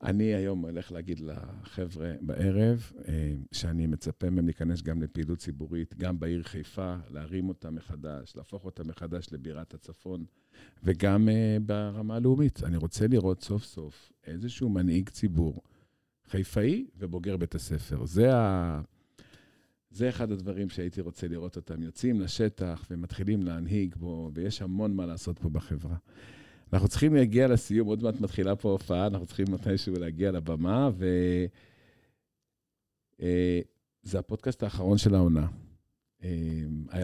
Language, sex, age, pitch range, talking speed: Hebrew, male, 50-69, 85-105 Hz, 130 wpm